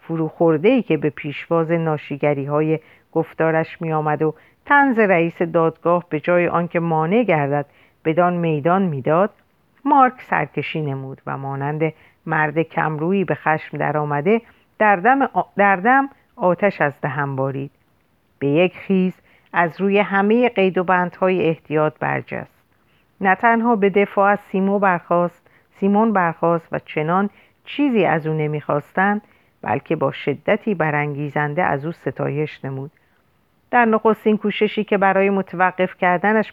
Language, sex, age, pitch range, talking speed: Persian, female, 50-69, 155-205 Hz, 130 wpm